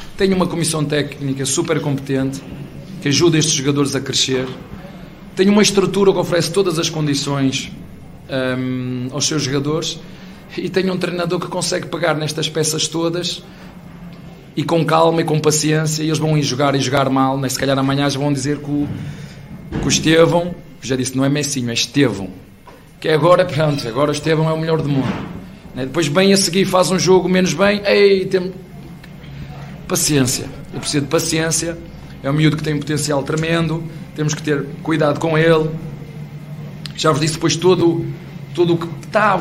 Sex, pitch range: male, 140-170 Hz